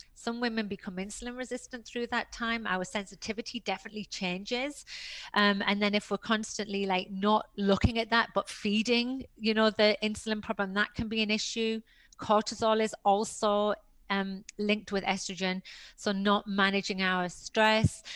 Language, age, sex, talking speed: English, 30-49, female, 155 wpm